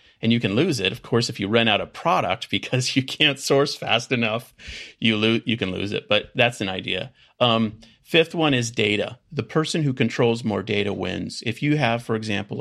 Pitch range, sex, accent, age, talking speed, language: 100-120 Hz, male, American, 40-59, 220 wpm, English